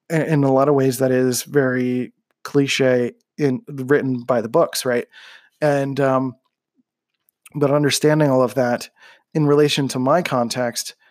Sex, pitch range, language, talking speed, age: male, 125-145 Hz, English, 145 wpm, 20-39